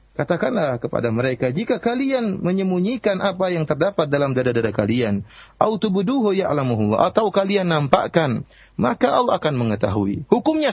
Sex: male